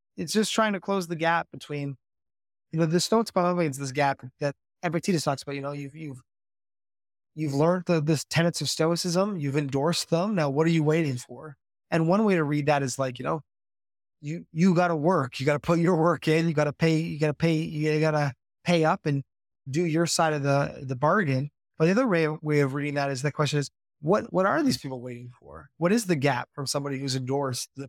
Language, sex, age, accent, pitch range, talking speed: English, male, 20-39, American, 135-165 Hz, 230 wpm